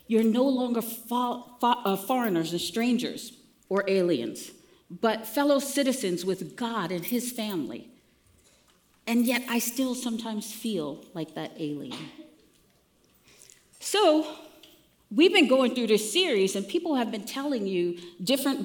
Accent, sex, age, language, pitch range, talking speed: American, female, 40-59, English, 180-255 Hz, 125 wpm